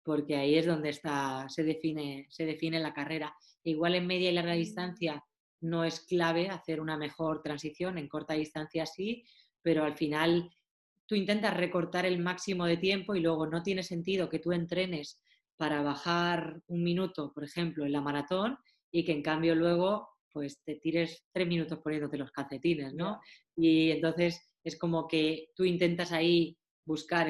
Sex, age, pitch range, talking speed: female, 20-39, 150-170 Hz, 175 wpm